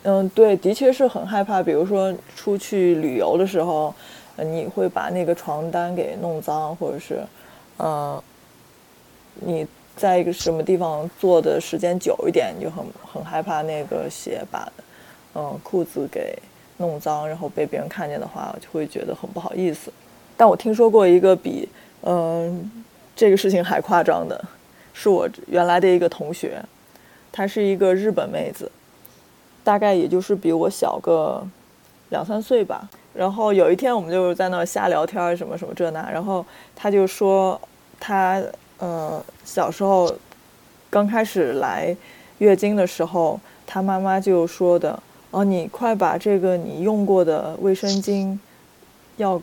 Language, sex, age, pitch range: Chinese, female, 20-39, 170-200 Hz